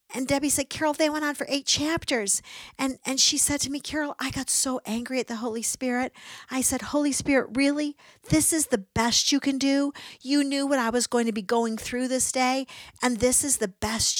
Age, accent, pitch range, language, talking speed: 50-69, American, 185-255 Hz, English, 230 wpm